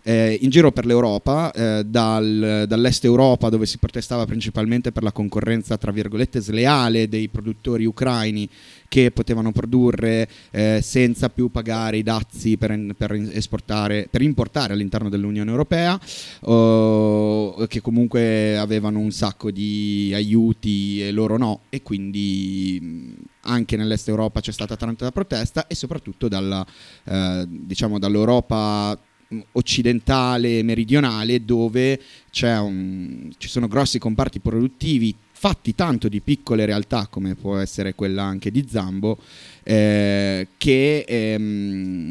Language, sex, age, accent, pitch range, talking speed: Italian, male, 30-49, native, 105-120 Hz, 125 wpm